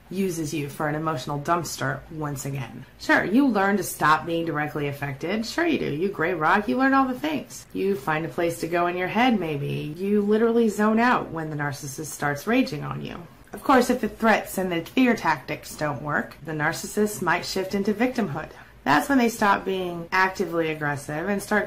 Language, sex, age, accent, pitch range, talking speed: English, female, 30-49, American, 150-215 Hz, 205 wpm